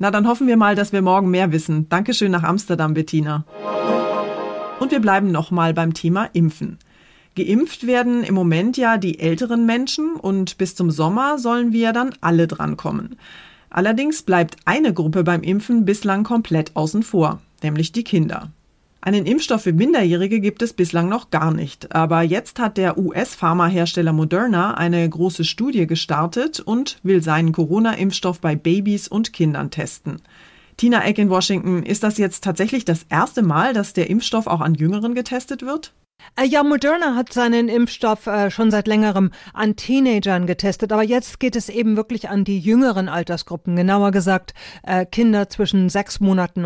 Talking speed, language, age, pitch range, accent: 165 wpm, German, 30-49, 175-225 Hz, German